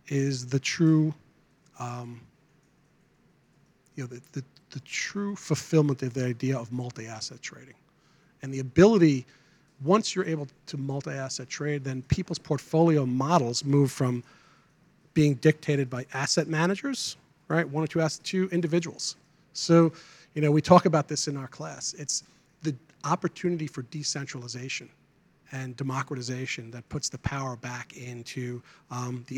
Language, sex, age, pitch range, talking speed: English, male, 40-59, 130-160 Hz, 140 wpm